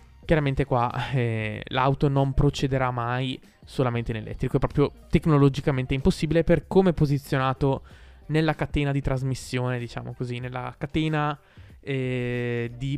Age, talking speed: 20-39, 125 wpm